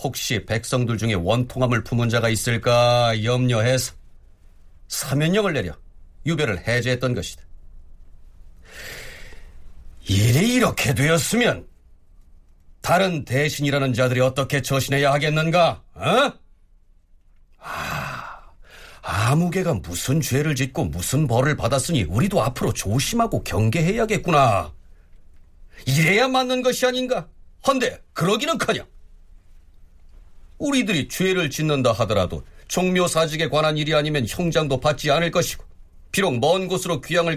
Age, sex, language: 40-59, male, Korean